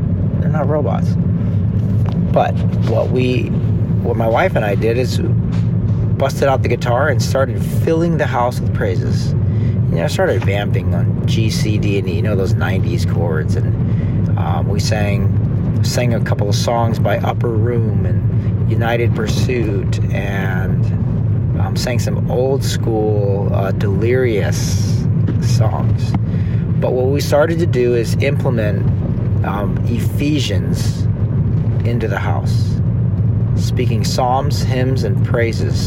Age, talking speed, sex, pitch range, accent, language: 40-59, 135 wpm, male, 105-120 Hz, American, English